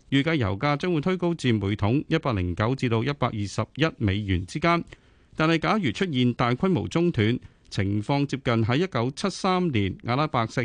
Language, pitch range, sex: Chinese, 105-155 Hz, male